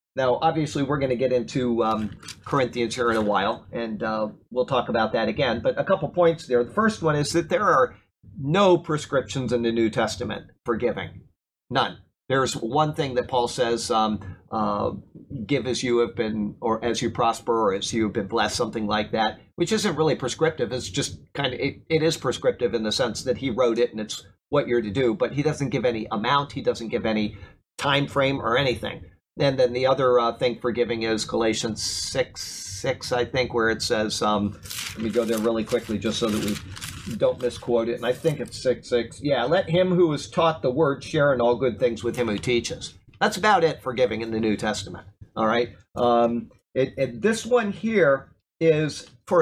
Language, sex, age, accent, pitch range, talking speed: English, male, 50-69, American, 110-140 Hz, 215 wpm